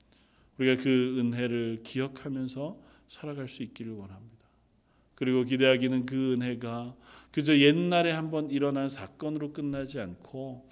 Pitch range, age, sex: 120-155 Hz, 40-59, male